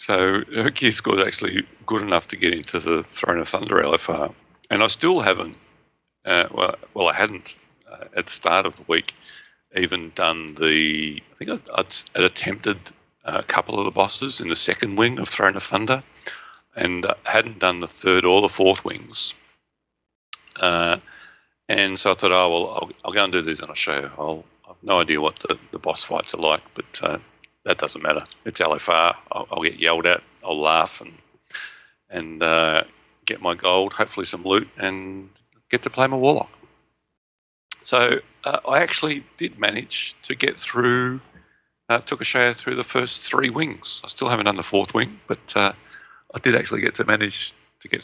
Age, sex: 40-59, male